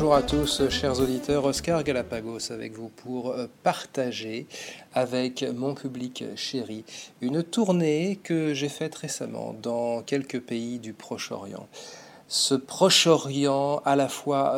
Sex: male